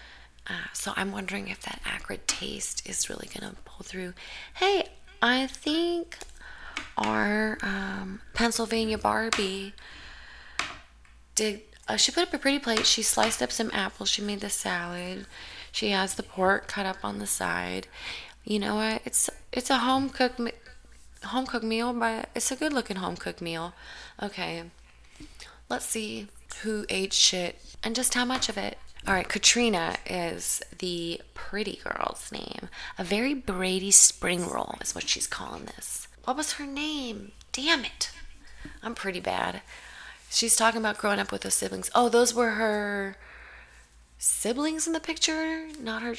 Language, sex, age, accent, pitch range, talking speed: English, female, 20-39, American, 185-250 Hz, 160 wpm